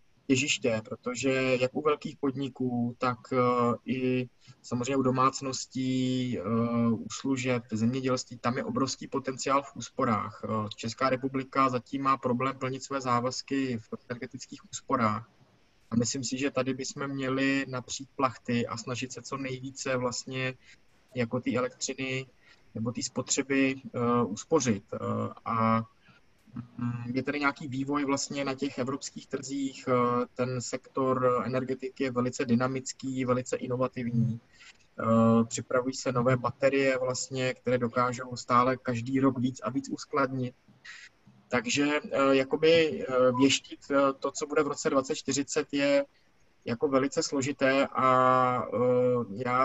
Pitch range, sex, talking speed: 125-135 Hz, male, 120 wpm